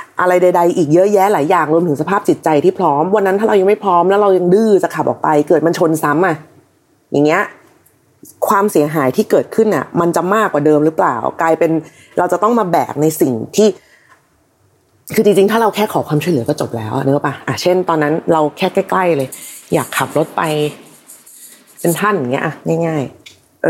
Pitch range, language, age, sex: 150-200 Hz, Thai, 20-39, female